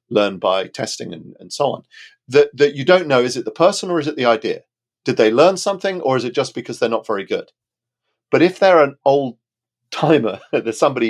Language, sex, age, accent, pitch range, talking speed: English, male, 40-59, British, 110-155 Hz, 225 wpm